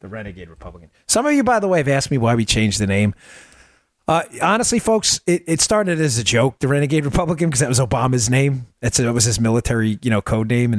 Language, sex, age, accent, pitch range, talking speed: English, male, 30-49, American, 100-145 Hz, 250 wpm